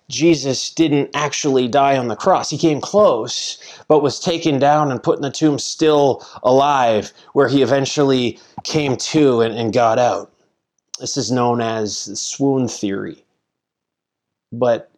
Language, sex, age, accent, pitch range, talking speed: English, male, 30-49, American, 125-170 Hz, 150 wpm